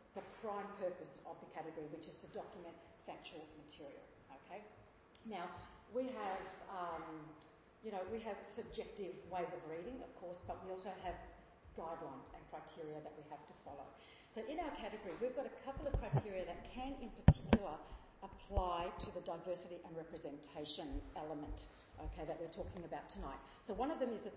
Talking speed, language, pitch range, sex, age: 175 wpm, English, 165-215 Hz, female, 40-59